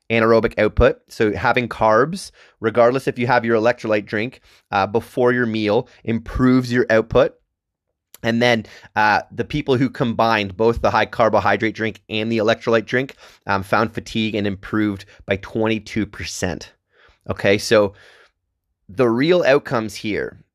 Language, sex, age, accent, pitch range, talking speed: English, male, 30-49, American, 100-125 Hz, 140 wpm